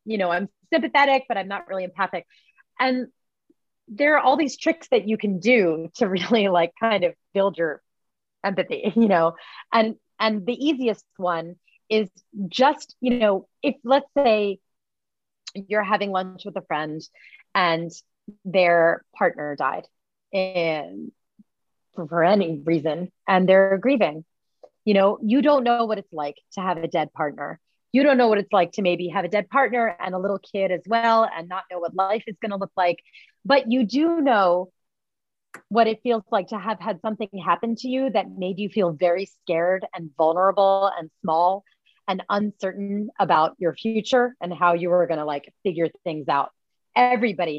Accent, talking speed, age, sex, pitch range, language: American, 175 wpm, 30-49, female, 175-225 Hz, English